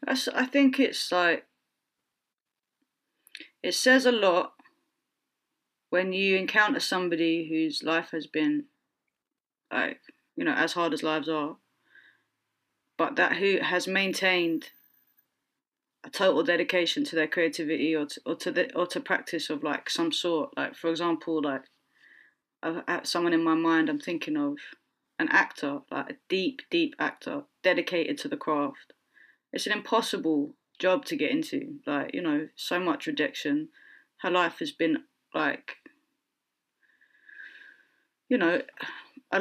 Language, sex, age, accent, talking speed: English, female, 20-39, British, 135 wpm